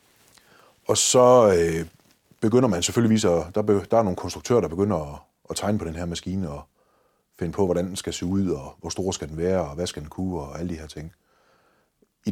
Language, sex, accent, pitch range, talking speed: Danish, male, native, 85-105 Hz, 210 wpm